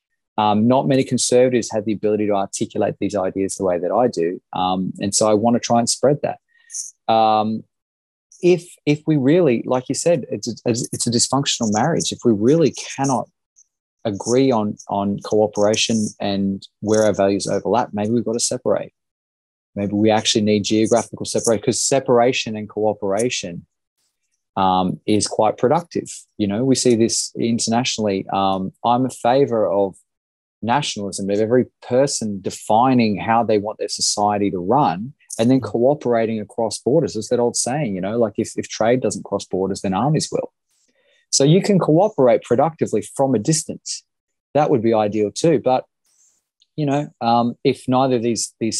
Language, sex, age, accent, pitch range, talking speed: English, male, 20-39, Australian, 105-125 Hz, 170 wpm